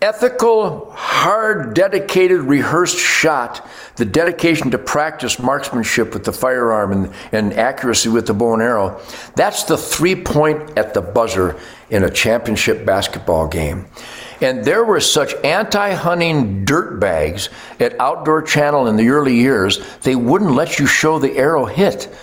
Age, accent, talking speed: 60-79, American, 150 wpm